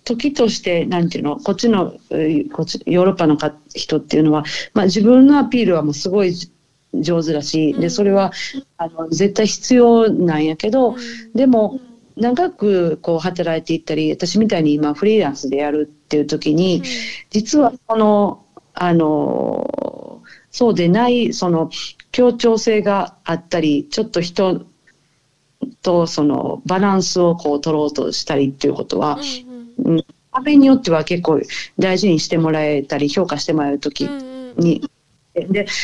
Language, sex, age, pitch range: Japanese, female, 50-69, 155-230 Hz